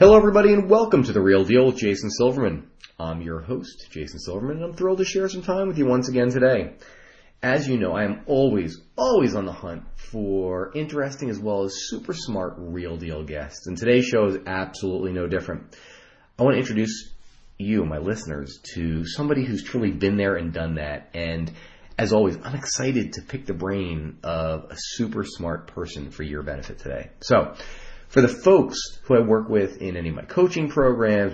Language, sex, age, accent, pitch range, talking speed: English, male, 30-49, American, 85-110 Hz, 195 wpm